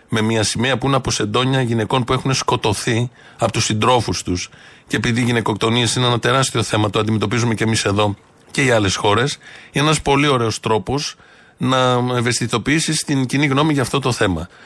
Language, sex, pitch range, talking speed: Greek, male, 110-135 Hz, 185 wpm